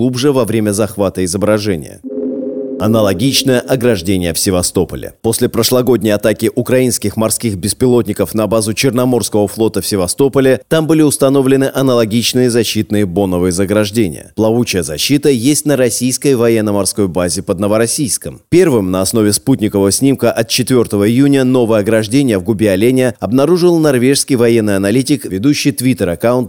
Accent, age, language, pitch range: native, 30-49, Russian, 105-130 Hz